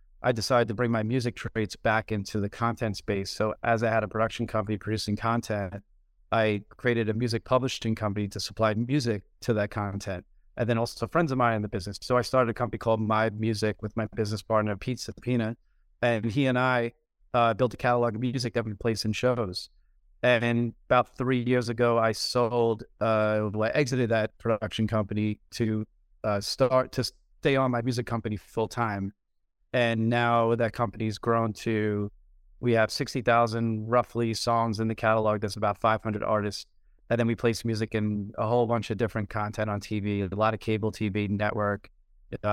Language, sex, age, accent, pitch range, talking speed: English, male, 30-49, American, 105-115 Hz, 190 wpm